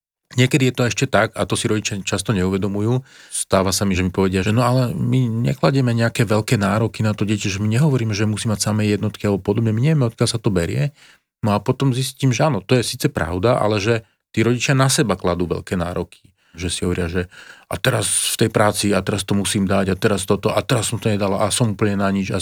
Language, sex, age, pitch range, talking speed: Slovak, male, 40-59, 95-115 Hz, 245 wpm